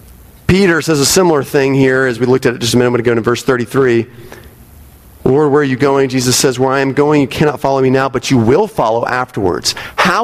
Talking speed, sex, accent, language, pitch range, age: 235 wpm, male, American, English, 110-140 Hz, 40-59